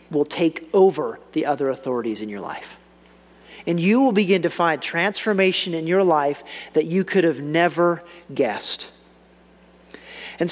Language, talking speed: English, 150 wpm